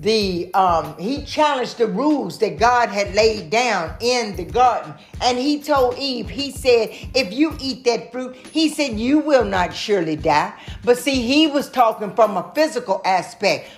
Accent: American